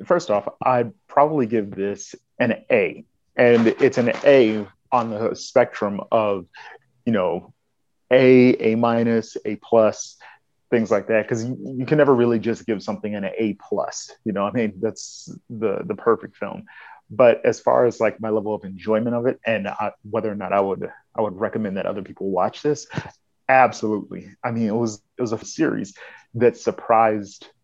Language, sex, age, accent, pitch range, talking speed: English, male, 30-49, American, 105-120 Hz, 180 wpm